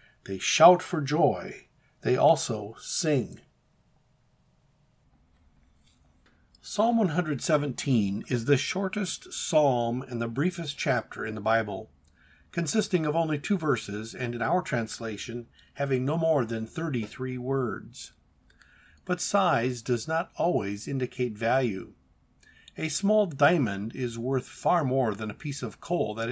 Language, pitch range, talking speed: English, 110-150 Hz, 125 wpm